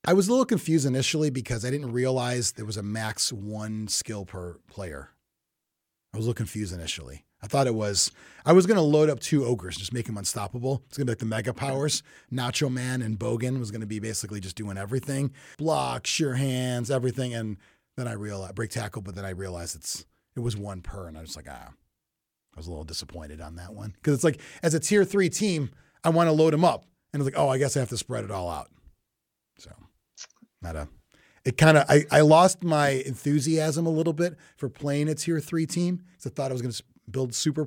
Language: English